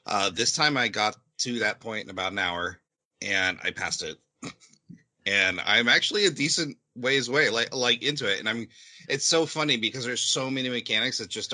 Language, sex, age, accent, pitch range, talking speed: English, male, 30-49, American, 90-130 Hz, 205 wpm